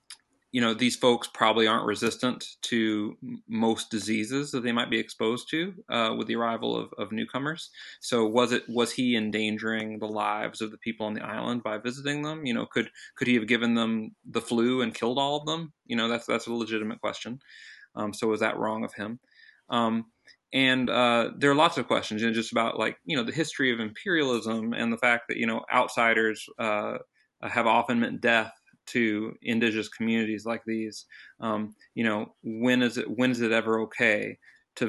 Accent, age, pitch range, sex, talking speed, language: American, 30-49, 110-125 Hz, male, 200 wpm, English